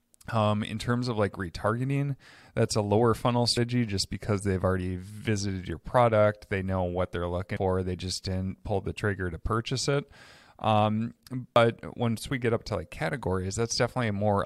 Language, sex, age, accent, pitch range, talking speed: English, male, 30-49, American, 95-115 Hz, 190 wpm